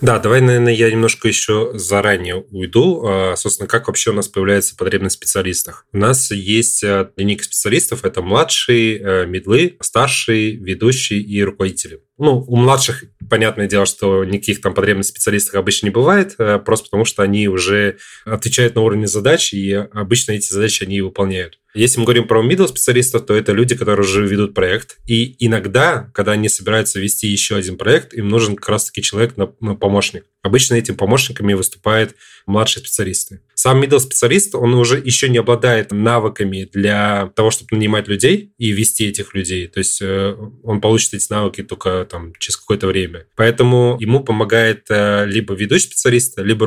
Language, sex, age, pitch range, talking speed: Russian, male, 20-39, 100-115 Hz, 165 wpm